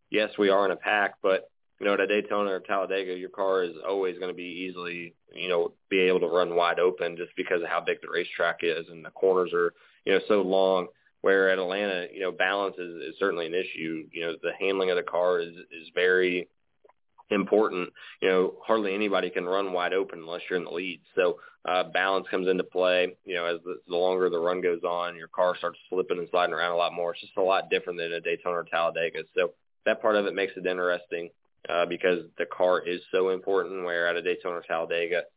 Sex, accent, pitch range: male, American, 85-105 Hz